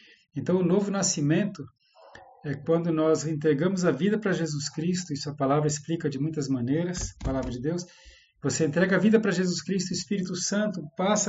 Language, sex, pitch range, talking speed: Portuguese, male, 155-190 Hz, 185 wpm